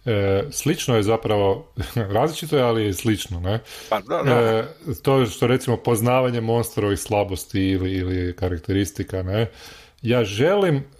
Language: Croatian